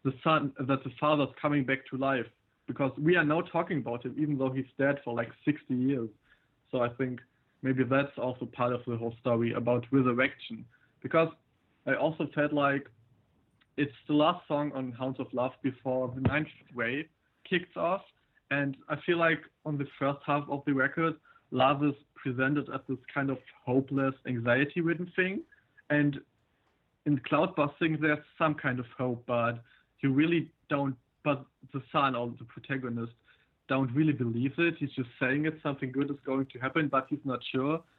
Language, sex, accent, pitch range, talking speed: English, male, German, 130-150 Hz, 180 wpm